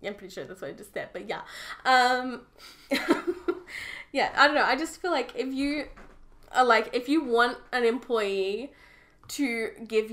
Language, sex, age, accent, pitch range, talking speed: English, female, 10-29, Australian, 195-235 Hz, 180 wpm